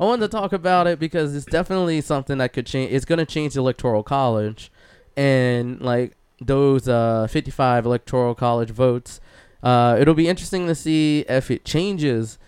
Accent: American